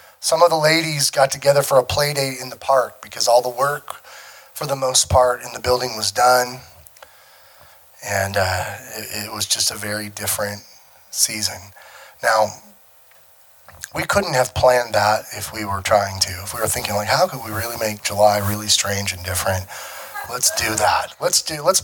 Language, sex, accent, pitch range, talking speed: English, male, American, 100-145 Hz, 185 wpm